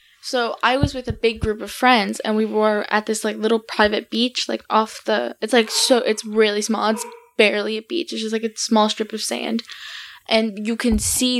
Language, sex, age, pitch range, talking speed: English, female, 10-29, 210-235 Hz, 225 wpm